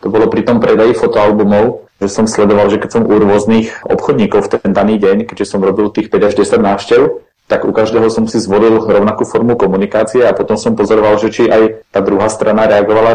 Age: 30-49